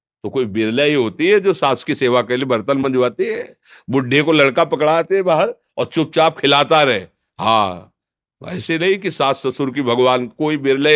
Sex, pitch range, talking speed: male, 115-155 Hz, 190 wpm